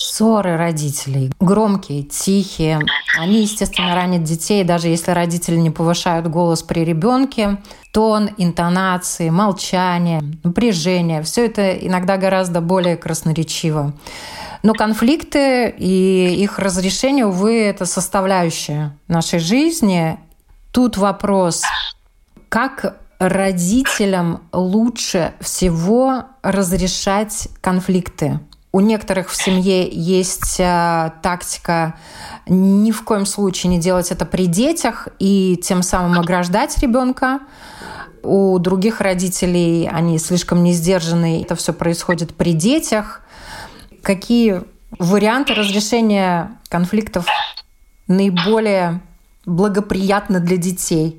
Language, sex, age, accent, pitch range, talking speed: Russian, female, 30-49, native, 175-210 Hz, 95 wpm